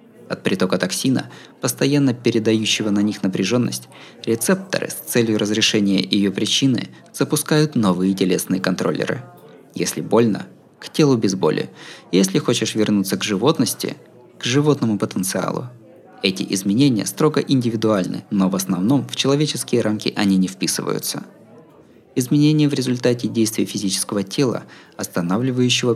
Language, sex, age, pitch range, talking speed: Russian, male, 20-39, 100-130 Hz, 120 wpm